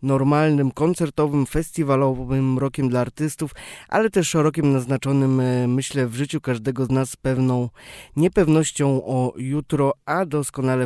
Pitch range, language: 130-155 Hz, Polish